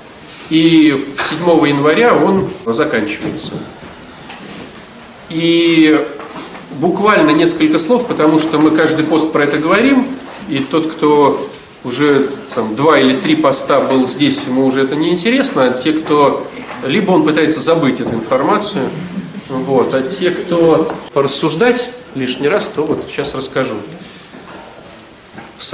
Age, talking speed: 40-59, 125 wpm